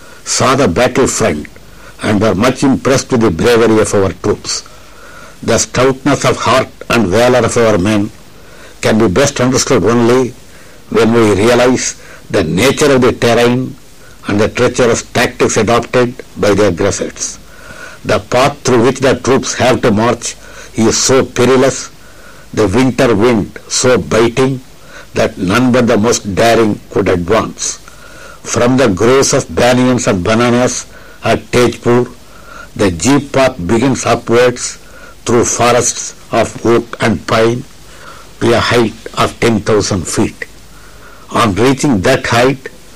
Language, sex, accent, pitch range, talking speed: Tamil, male, native, 115-125 Hz, 140 wpm